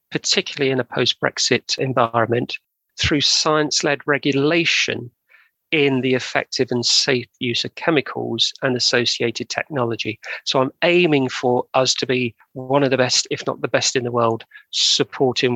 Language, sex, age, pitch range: English, male, 40-59, 125-150 Hz